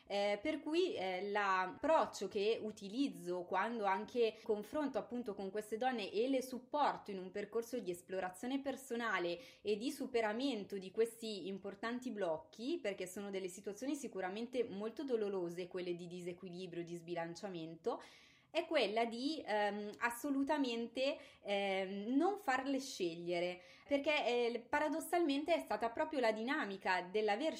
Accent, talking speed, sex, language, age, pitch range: native, 135 wpm, female, Italian, 20-39, 190-255 Hz